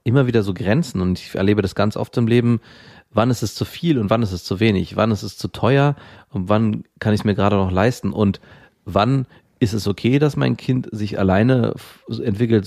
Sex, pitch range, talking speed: male, 95-120 Hz, 225 wpm